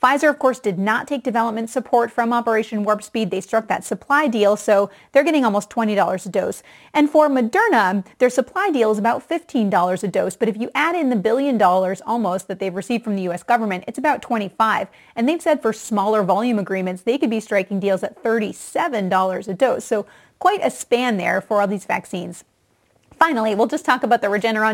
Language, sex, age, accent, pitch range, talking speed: English, female, 30-49, American, 200-250 Hz, 210 wpm